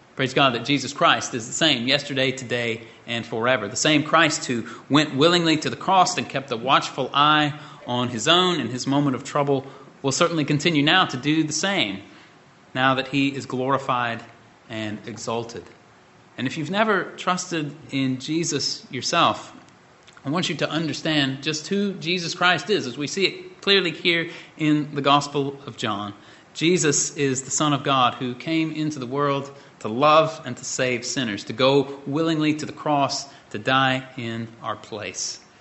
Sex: male